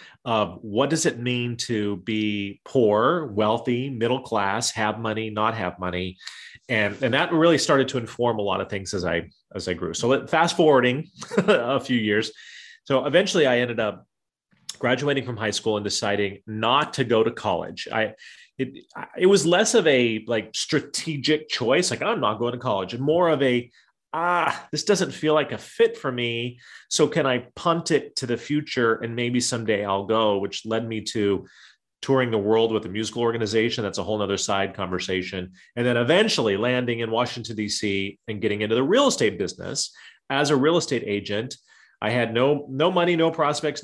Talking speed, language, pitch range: 190 wpm, English, 110-145 Hz